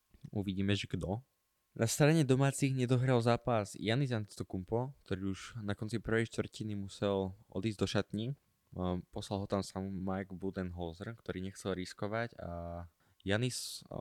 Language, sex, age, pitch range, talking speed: Slovak, male, 20-39, 95-110 Hz, 135 wpm